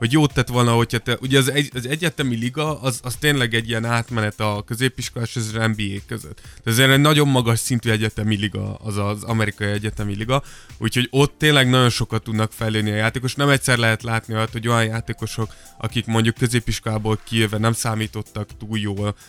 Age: 20-39